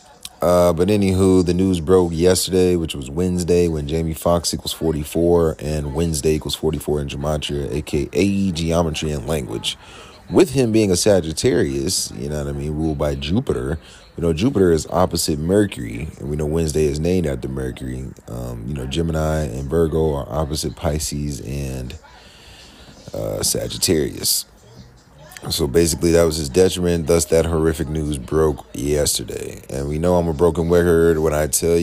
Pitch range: 75-85 Hz